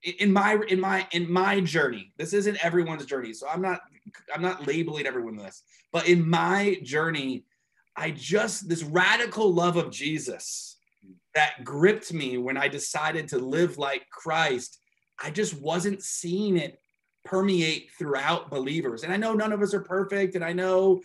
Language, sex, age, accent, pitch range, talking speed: English, male, 30-49, American, 145-185 Hz, 170 wpm